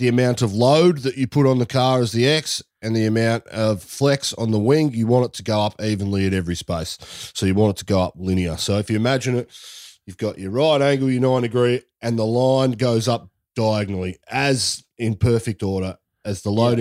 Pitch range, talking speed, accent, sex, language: 95-120 Hz, 230 wpm, Australian, male, English